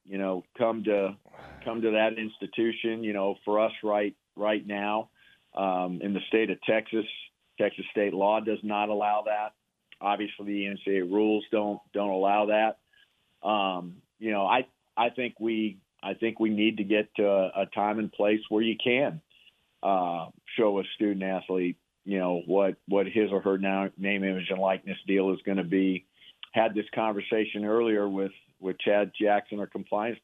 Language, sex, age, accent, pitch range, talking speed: English, male, 50-69, American, 100-110 Hz, 175 wpm